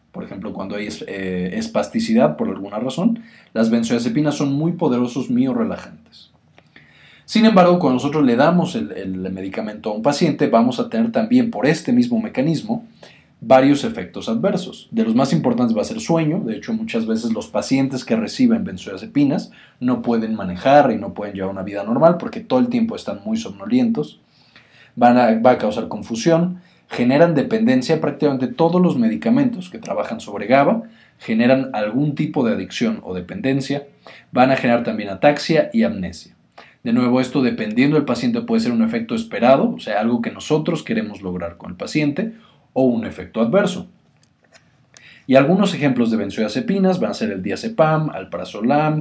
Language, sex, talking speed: Spanish, male, 170 wpm